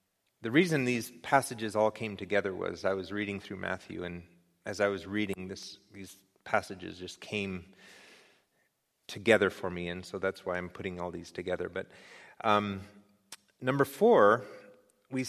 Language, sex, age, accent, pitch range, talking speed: English, male, 30-49, American, 100-135 Hz, 155 wpm